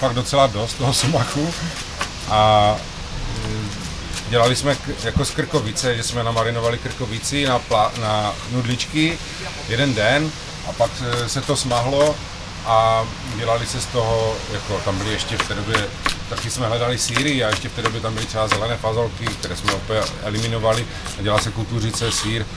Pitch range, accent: 110-145 Hz, native